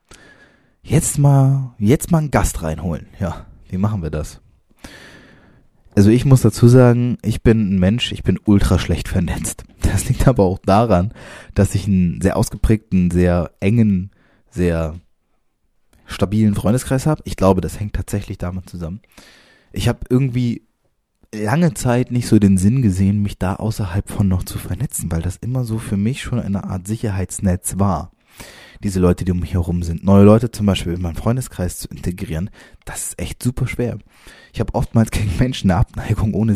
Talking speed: 175 wpm